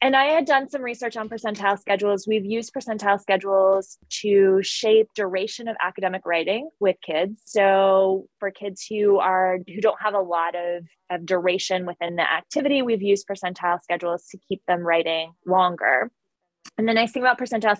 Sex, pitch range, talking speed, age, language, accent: female, 175-215 Hz, 175 wpm, 20-39, English, American